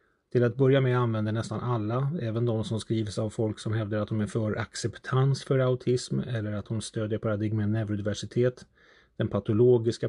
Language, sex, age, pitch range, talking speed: Swedish, male, 30-49, 105-125 Hz, 180 wpm